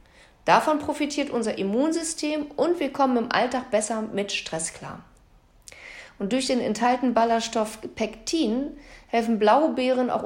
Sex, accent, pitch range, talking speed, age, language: female, German, 205-275 Hz, 130 wpm, 40-59, German